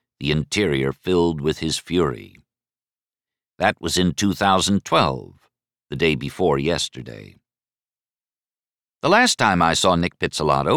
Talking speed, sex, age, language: 115 wpm, male, 60-79, English